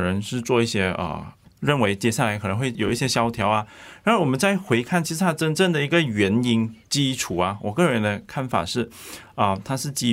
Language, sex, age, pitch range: Chinese, male, 20-39, 105-135 Hz